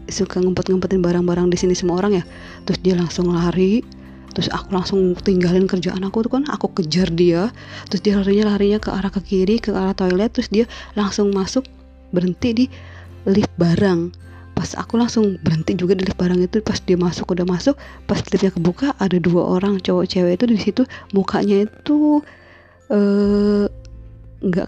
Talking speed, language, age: 170 wpm, Indonesian, 20-39